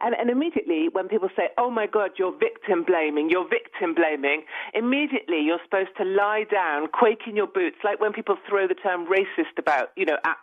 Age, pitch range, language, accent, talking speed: 40-59, 185-300 Hz, English, British, 205 wpm